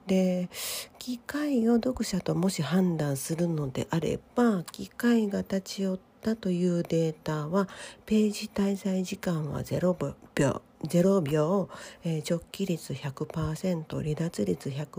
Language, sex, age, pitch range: Japanese, female, 40-59, 160-215 Hz